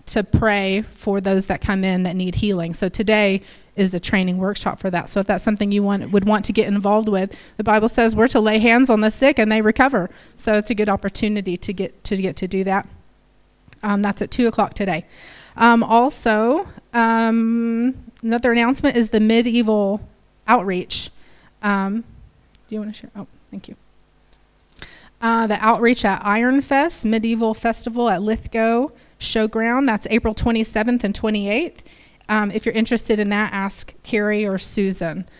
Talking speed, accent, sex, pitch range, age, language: 175 wpm, American, female, 200-235 Hz, 30-49, English